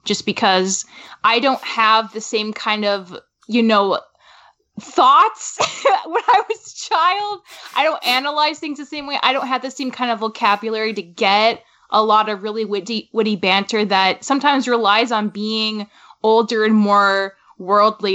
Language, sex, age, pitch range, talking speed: English, female, 10-29, 200-245 Hz, 165 wpm